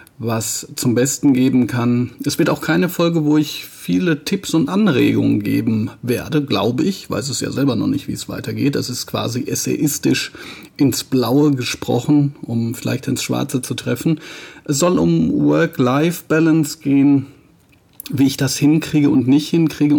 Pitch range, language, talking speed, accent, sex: 125-150 Hz, German, 165 wpm, German, male